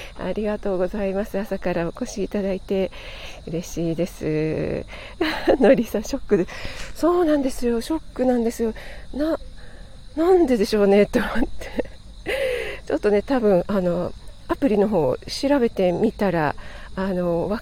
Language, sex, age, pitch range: Japanese, female, 40-59, 170-240 Hz